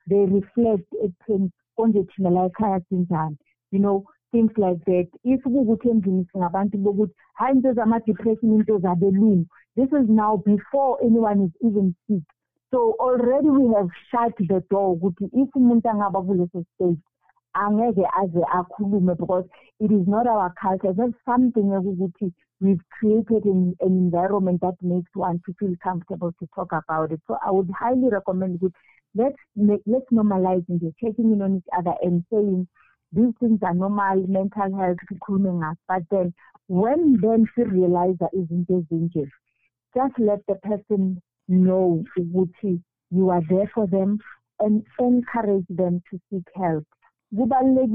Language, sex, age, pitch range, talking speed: English, female, 50-69, 180-220 Hz, 170 wpm